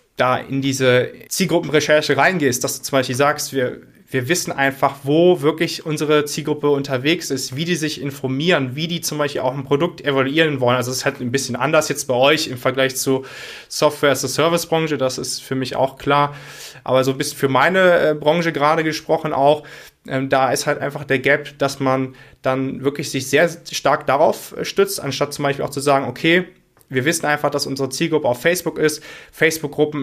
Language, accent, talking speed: German, German, 200 wpm